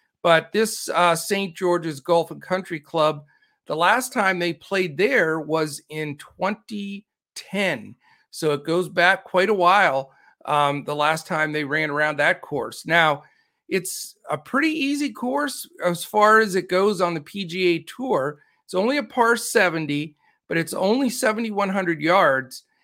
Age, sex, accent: 50-69, male, American